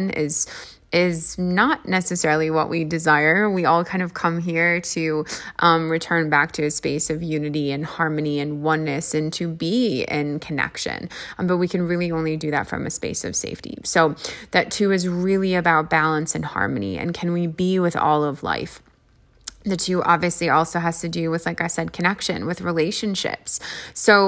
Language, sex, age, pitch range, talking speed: English, female, 20-39, 160-185 Hz, 190 wpm